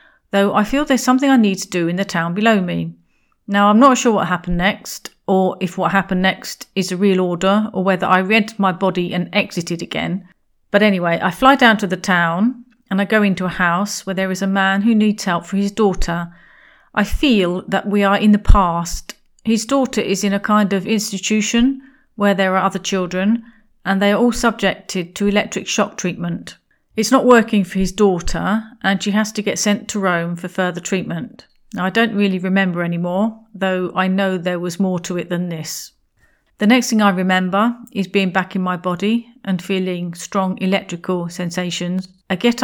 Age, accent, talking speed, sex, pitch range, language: 40-59, British, 205 wpm, female, 185-215 Hz, English